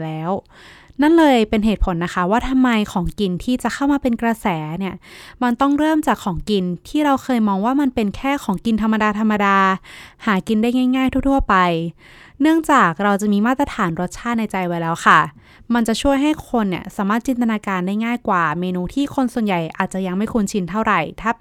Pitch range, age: 185-245 Hz, 20-39